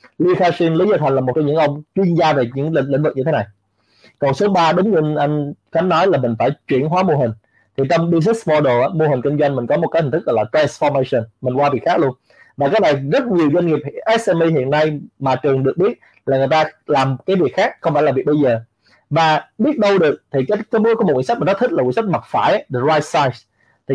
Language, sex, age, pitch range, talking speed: Vietnamese, male, 20-39, 130-170 Hz, 265 wpm